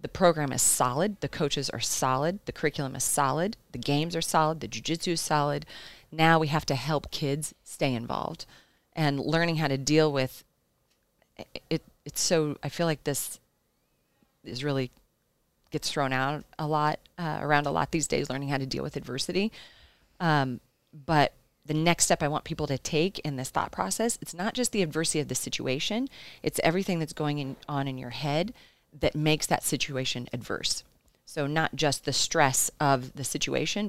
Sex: female